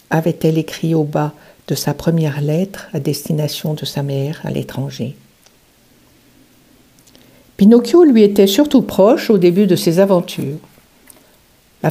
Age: 60-79